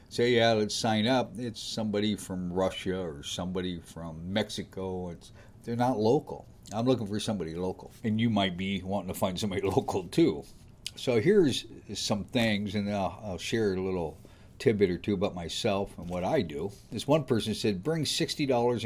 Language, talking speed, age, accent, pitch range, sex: English, 180 wpm, 60-79, American, 100-125 Hz, male